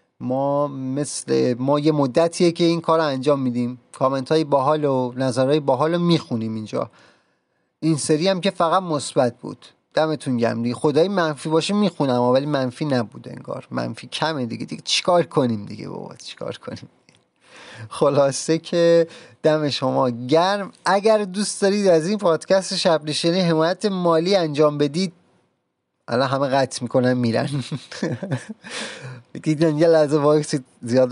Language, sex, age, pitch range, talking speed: Persian, male, 30-49, 130-170 Hz, 140 wpm